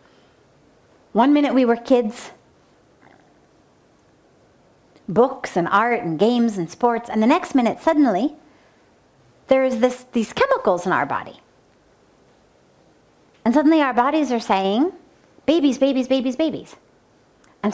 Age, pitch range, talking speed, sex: 40-59, 210-290 Hz, 120 wpm, female